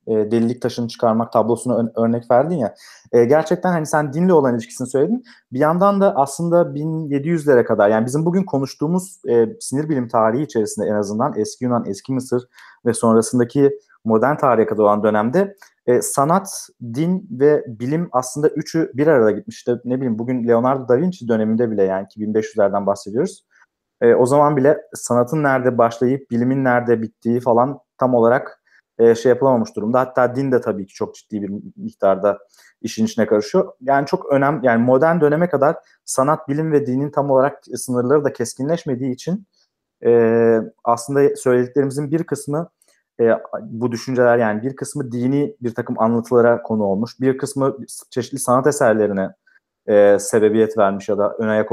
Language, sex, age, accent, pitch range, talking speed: Turkish, male, 30-49, native, 115-145 Hz, 155 wpm